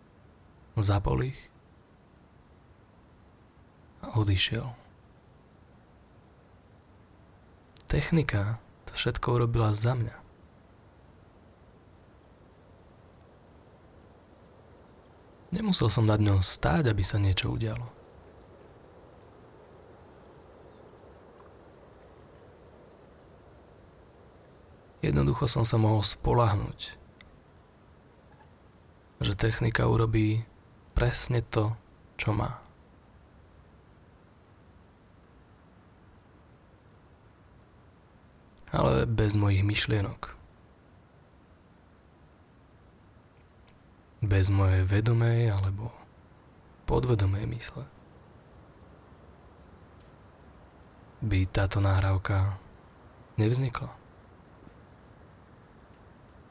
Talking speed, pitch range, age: 50 wpm, 90-110 Hz, 30-49